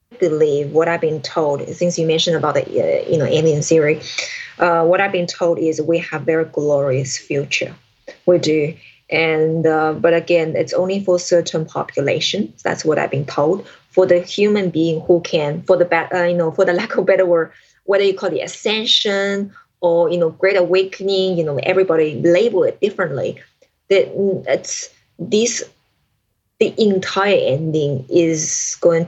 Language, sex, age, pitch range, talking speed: English, female, 20-39, 155-190 Hz, 175 wpm